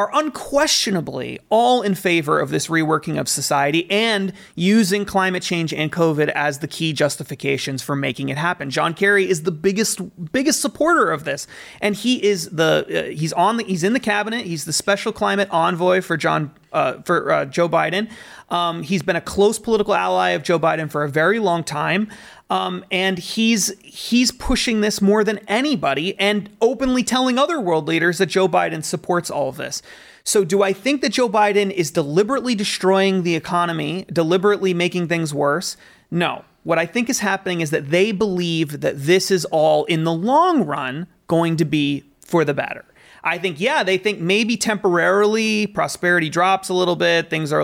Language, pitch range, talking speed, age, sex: English, 165-210 Hz, 185 wpm, 30-49, male